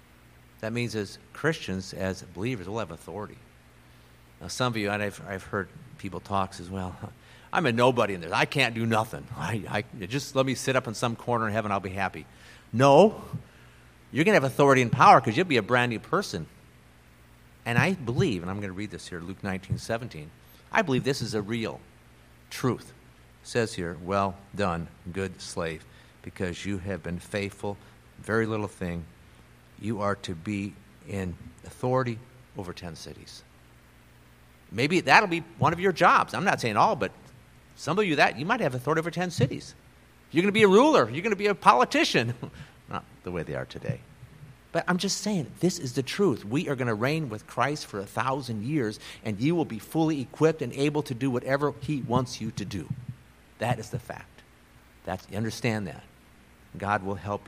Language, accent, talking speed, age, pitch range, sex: English, American, 200 wpm, 50-69, 85-130 Hz, male